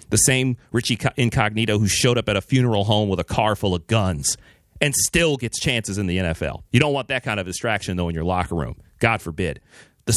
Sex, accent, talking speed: male, American, 230 wpm